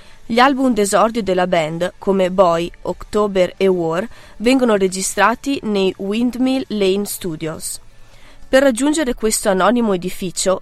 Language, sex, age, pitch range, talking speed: Italian, female, 20-39, 185-225 Hz, 120 wpm